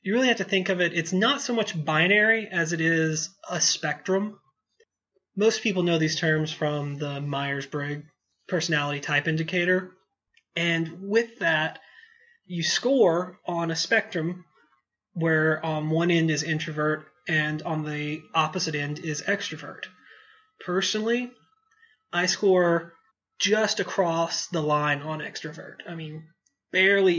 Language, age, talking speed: English, 30-49, 135 wpm